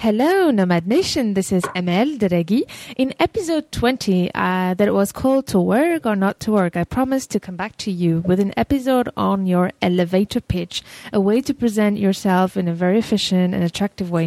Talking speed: 200 wpm